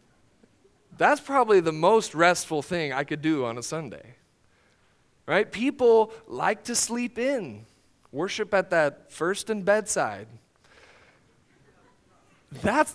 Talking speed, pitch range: 115 wpm, 180-240 Hz